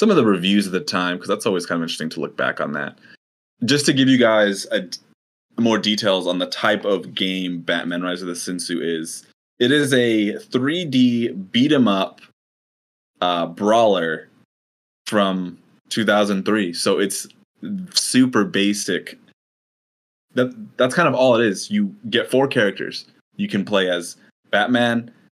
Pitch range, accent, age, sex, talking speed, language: 90-120 Hz, American, 20-39, male, 155 wpm, English